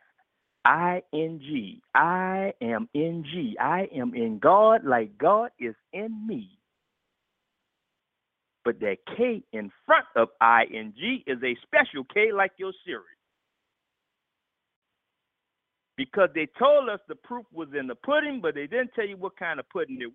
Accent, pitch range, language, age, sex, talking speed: American, 165-270 Hz, English, 50-69, male, 135 wpm